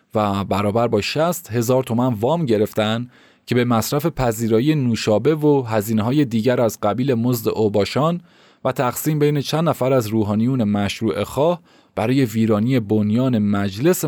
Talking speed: 145 wpm